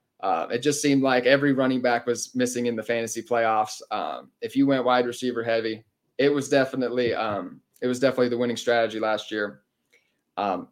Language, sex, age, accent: English, male, 30-49, American